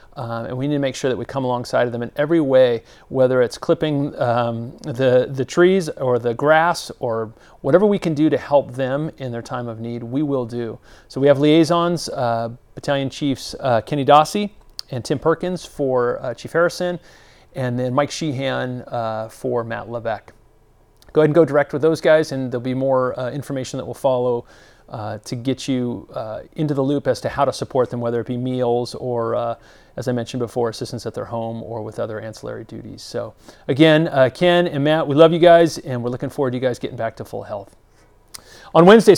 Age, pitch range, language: 30-49, 120-160 Hz, English